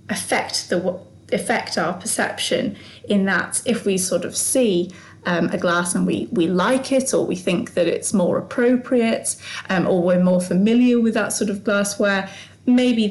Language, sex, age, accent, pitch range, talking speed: English, female, 30-49, British, 180-220 Hz, 175 wpm